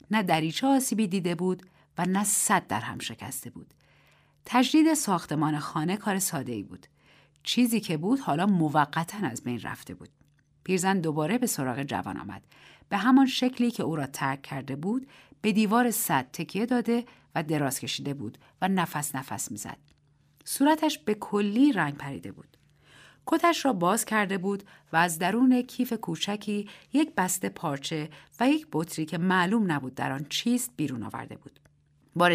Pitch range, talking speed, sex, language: 145-220 Hz, 165 wpm, female, Persian